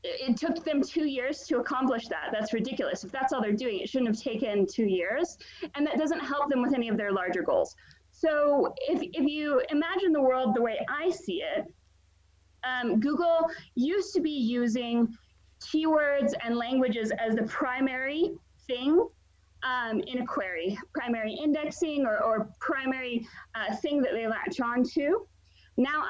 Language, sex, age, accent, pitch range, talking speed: English, female, 30-49, American, 235-310 Hz, 170 wpm